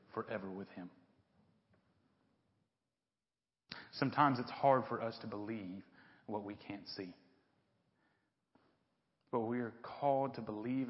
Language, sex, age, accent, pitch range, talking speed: English, male, 40-59, American, 100-125 Hz, 110 wpm